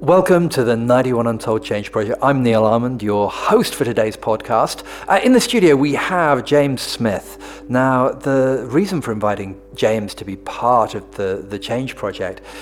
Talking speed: 175 wpm